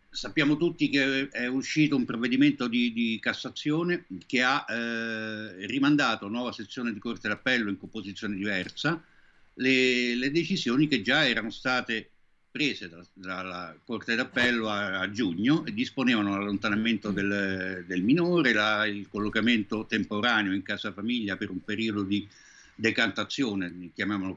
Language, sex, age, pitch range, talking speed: Italian, male, 60-79, 105-135 Hz, 140 wpm